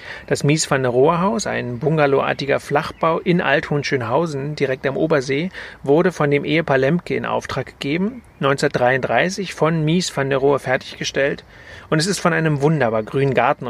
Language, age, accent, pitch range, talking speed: German, 40-59, German, 130-165 Hz, 160 wpm